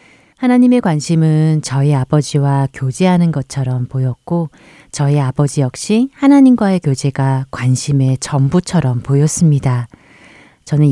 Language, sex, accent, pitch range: Korean, female, native, 135-170 Hz